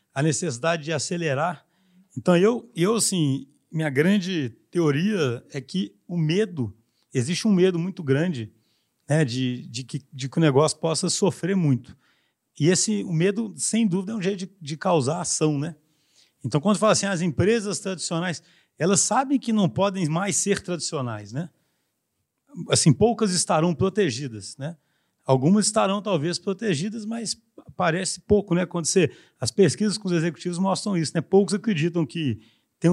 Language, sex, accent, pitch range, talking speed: Portuguese, male, Brazilian, 150-195 Hz, 155 wpm